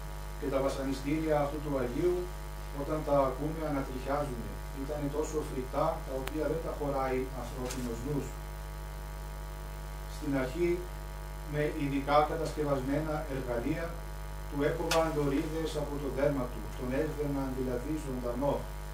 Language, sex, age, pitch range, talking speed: Greek, male, 40-59, 135-155 Hz, 115 wpm